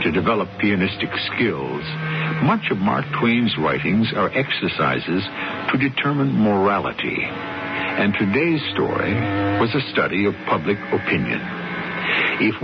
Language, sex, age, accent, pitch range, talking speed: English, male, 60-79, American, 95-155 Hz, 115 wpm